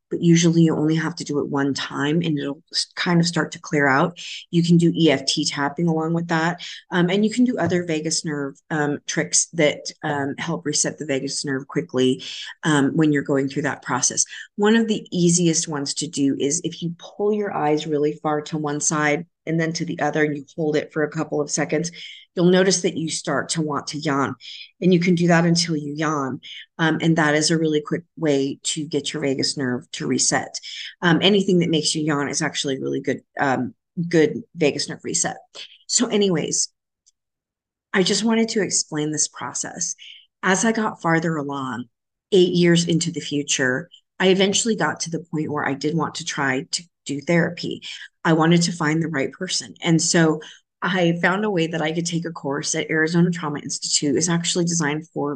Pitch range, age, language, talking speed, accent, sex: 145-170 Hz, 30-49, English, 205 wpm, American, female